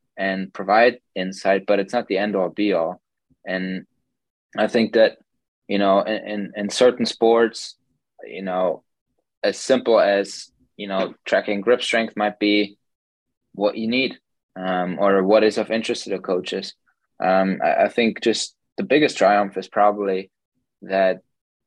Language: English